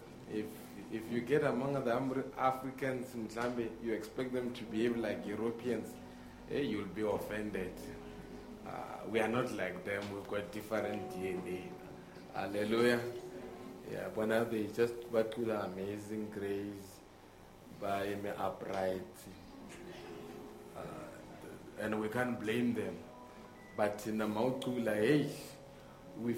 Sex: male